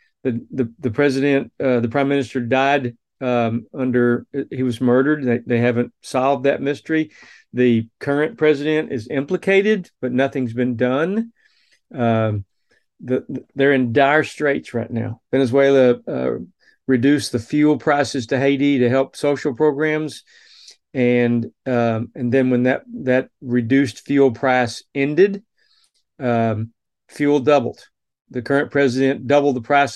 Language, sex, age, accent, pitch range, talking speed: English, male, 40-59, American, 125-150 Hz, 140 wpm